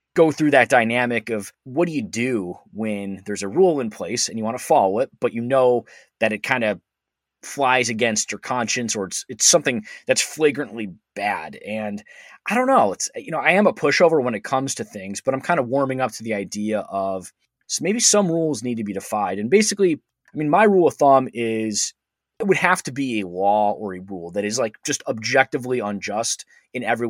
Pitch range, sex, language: 105-140 Hz, male, English